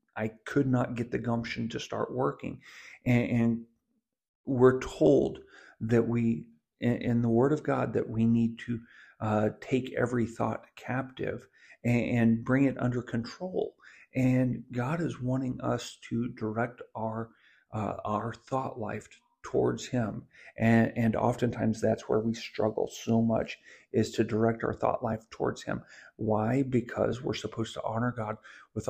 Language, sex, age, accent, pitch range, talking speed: English, male, 50-69, American, 110-125 Hz, 155 wpm